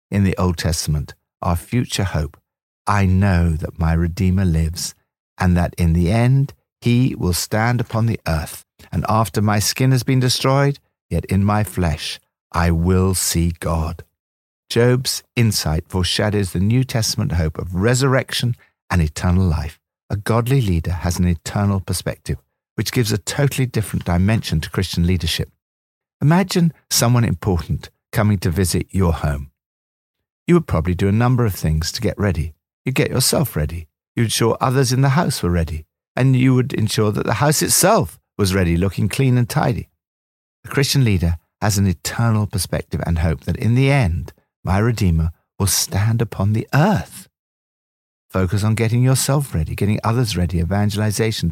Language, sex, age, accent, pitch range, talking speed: English, male, 60-79, British, 85-115 Hz, 165 wpm